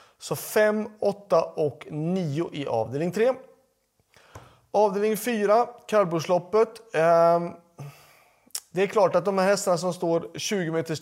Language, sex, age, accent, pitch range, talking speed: Swedish, male, 30-49, native, 150-190 Hz, 120 wpm